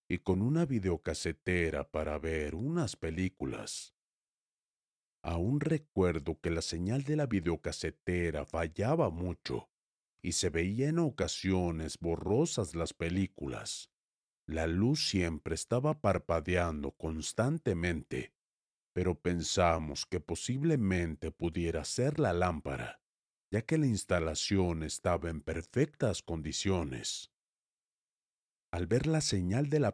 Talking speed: 110 wpm